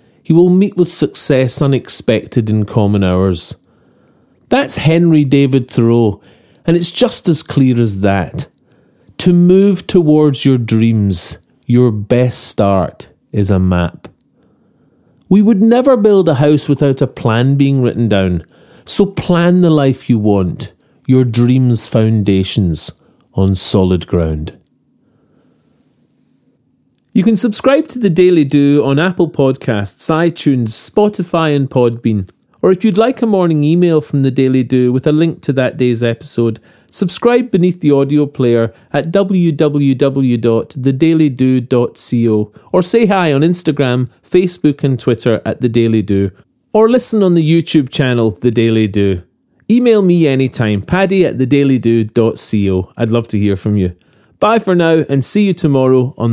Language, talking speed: English, 145 wpm